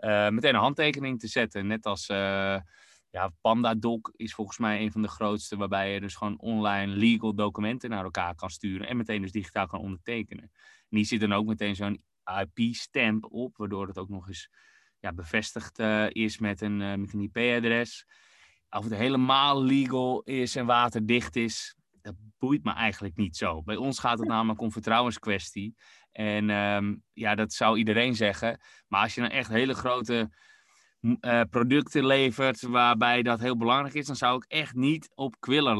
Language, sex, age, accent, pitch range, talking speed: Dutch, male, 20-39, Dutch, 100-120 Hz, 180 wpm